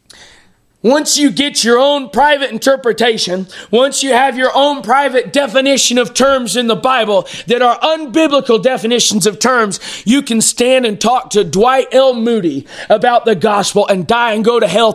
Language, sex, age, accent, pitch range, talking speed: English, male, 30-49, American, 200-260 Hz, 175 wpm